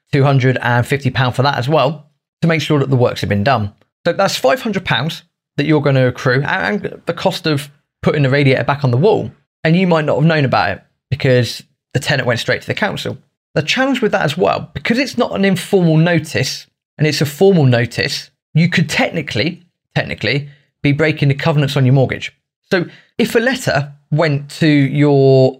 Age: 20-39